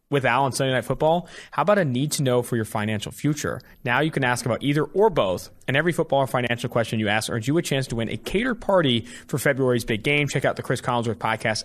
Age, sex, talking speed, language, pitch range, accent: 30-49, male, 255 wpm, English, 110-145 Hz, American